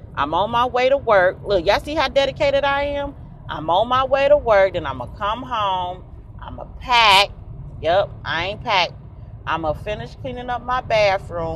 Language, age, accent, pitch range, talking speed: English, 30-49, American, 145-205 Hz, 215 wpm